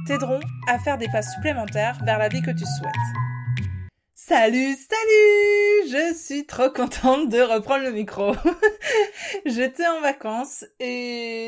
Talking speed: 135 wpm